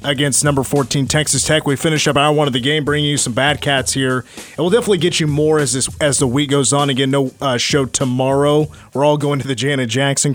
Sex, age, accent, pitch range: male, 30-49, American, 135-155 Hz